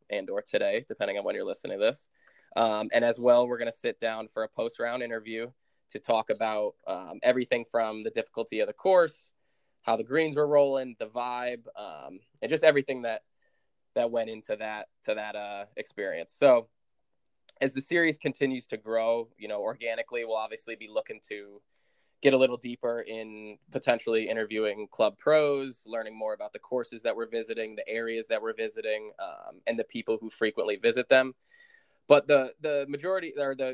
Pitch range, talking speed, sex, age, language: 110-150 Hz, 185 wpm, male, 10-29, English